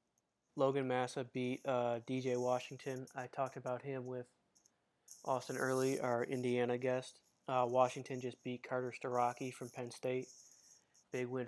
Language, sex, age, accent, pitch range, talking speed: English, male, 20-39, American, 120-130 Hz, 140 wpm